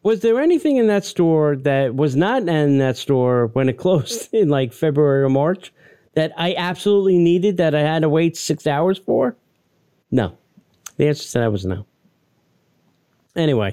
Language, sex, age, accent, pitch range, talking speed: English, male, 40-59, American, 125-170 Hz, 175 wpm